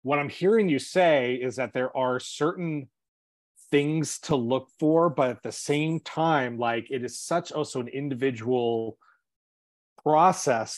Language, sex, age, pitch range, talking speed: English, male, 30-49, 115-145 Hz, 150 wpm